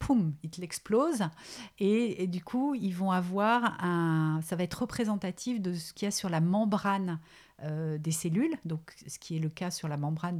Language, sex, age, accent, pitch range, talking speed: French, female, 50-69, French, 165-200 Hz, 195 wpm